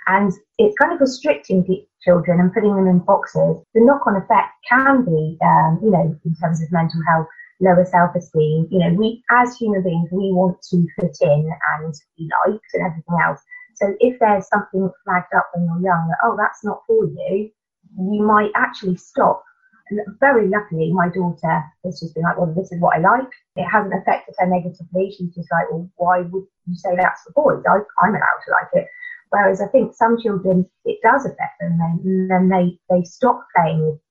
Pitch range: 175-210 Hz